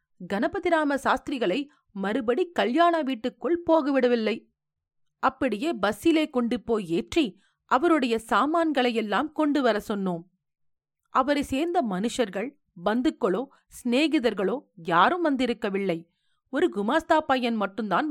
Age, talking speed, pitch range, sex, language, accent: 40-59, 85 wpm, 195-315 Hz, female, Tamil, native